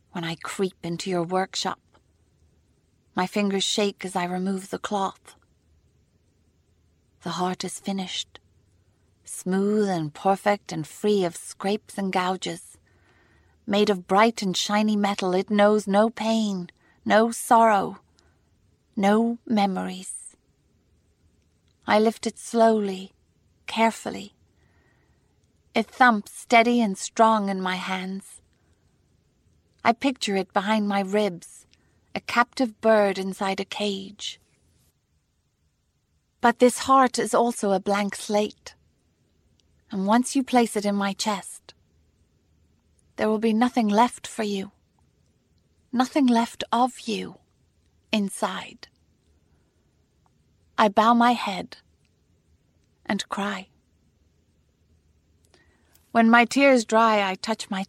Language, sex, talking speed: English, female, 110 wpm